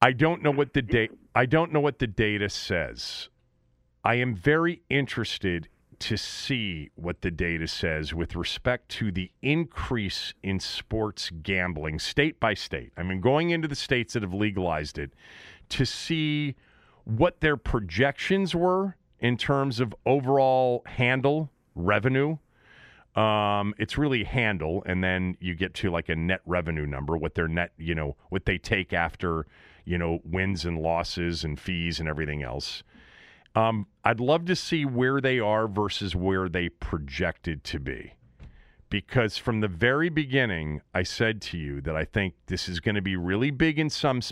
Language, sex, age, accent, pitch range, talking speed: English, male, 40-59, American, 90-130 Hz, 170 wpm